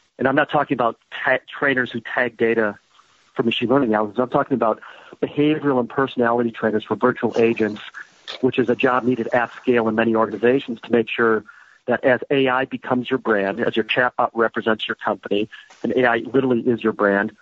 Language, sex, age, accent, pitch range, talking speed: English, male, 40-59, American, 110-125 Hz, 190 wpm